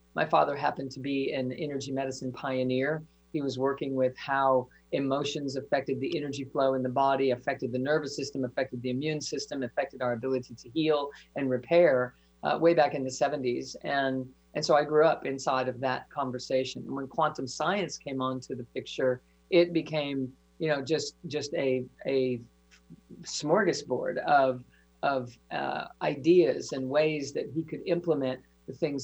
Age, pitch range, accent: 40-59, 130-160 Hz, American